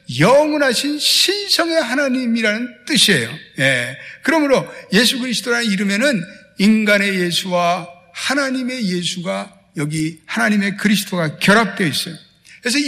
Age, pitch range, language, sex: 60-79, 160-250 Hz, Korean, male